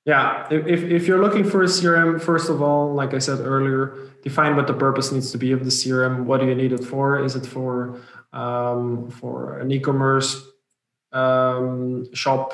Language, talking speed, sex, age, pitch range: English, 190 wpm, male, 20-39, 130-145 Hz